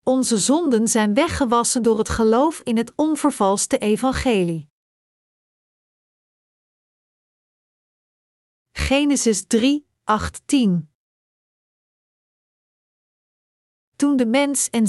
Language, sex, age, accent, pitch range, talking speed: Dutch, female, 50-69, Dutch, 200-250 Hz, 75 wpm